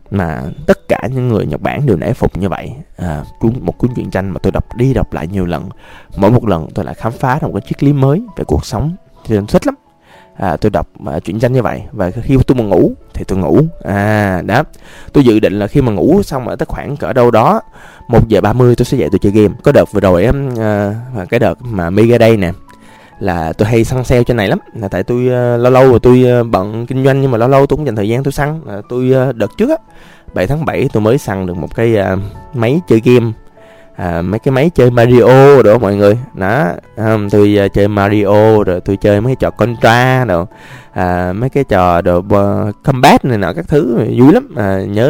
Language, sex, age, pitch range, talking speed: Vietnamese, male, 20-39, 100-125 Hz, 245 wpm